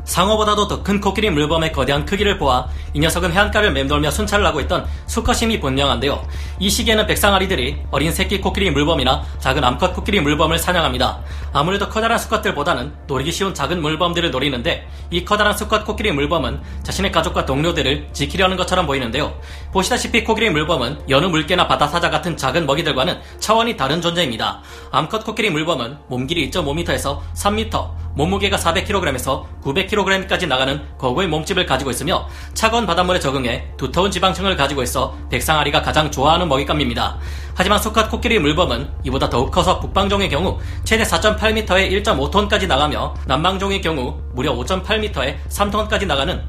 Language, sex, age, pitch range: Korean, male, 30-49, 130-200 Hz